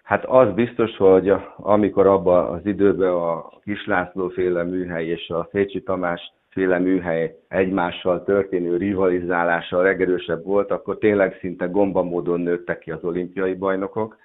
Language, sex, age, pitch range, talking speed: Hungarian, male, 50-69, 85-95 Hz, 135 wpm